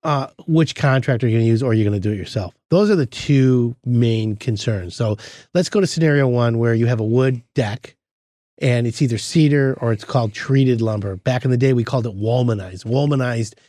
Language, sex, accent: English, male, American